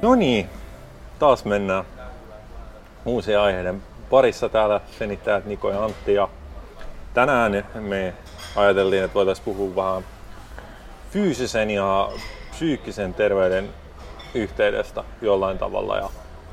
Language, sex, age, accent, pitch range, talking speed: Finnish, male, 30-49, native, 90-105 Hz, 100 wpm